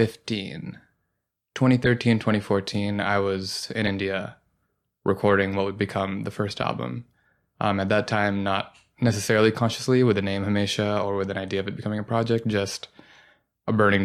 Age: 20-39